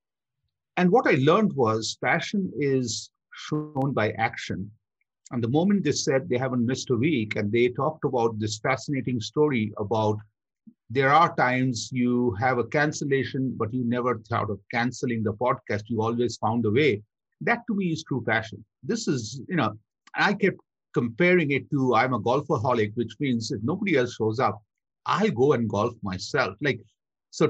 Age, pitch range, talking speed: 50-69, 115-165 Hz, 175 wpm